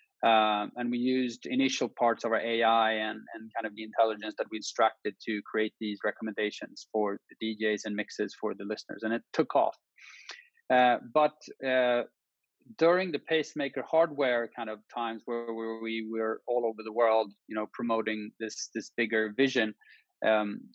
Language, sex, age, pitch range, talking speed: English, male, 20-39, 110-120 Hz, 170 wpm